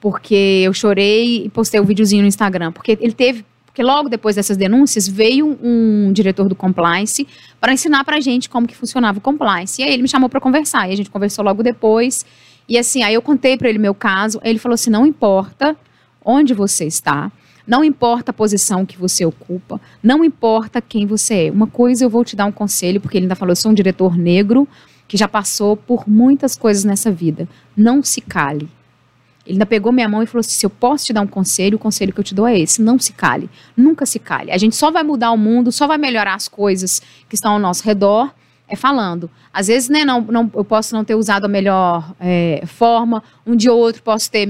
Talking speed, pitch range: 230 wpm, 195-245 Hz